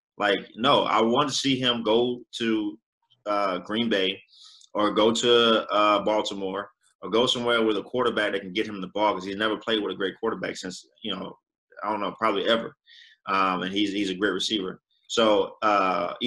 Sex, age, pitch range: male, 20-39, 100-115 Hz